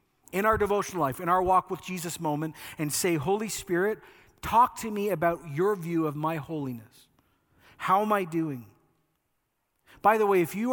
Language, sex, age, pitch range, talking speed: English, male, 40-59, 155-200 Hz, 180 wpm